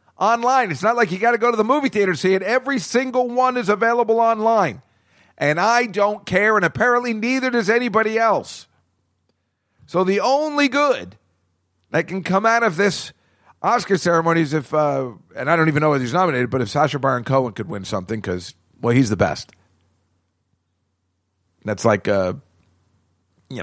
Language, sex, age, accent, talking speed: English, male, 50-69, American, 180 wpm